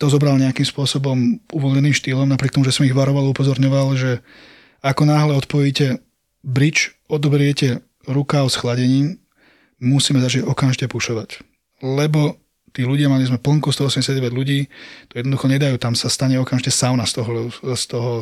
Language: Slovak